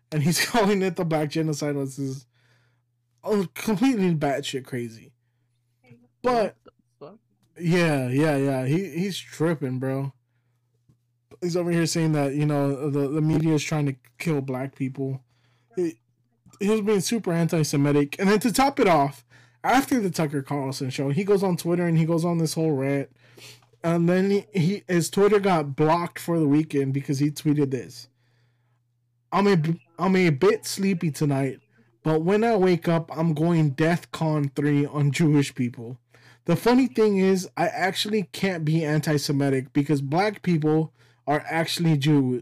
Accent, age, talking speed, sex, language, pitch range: American, 20-39, 165 wpm, male, English, 130-170 Hz